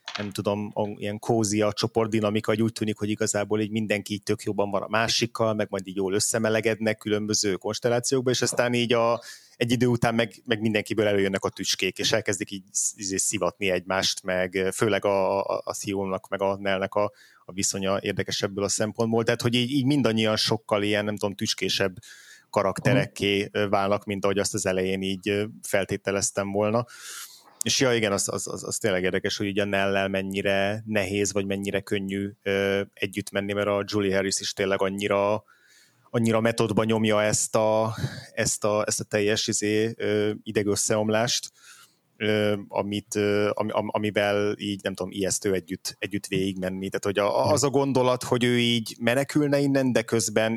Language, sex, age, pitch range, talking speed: Hungarian, male, 30-49, 100-110 Hz, 165 wpm